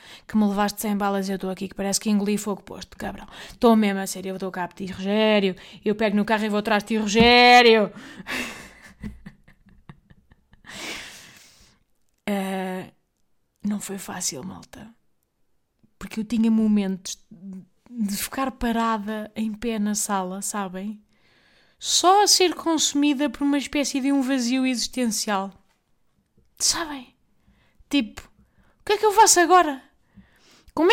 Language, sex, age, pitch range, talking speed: Portuguese, female, 20-39, 205-280 Hz, 140 wpm